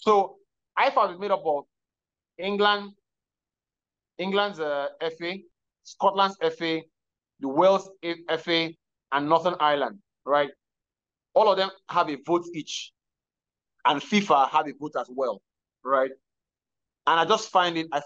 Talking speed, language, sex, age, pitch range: 135 wpm, English, male, 20-39, 140-185 Hz